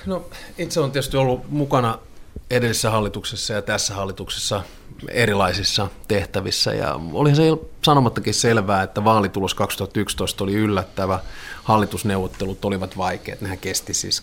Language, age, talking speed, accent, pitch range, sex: Finnish, 30-49, 120 wpm, native, 95-115 Hz, male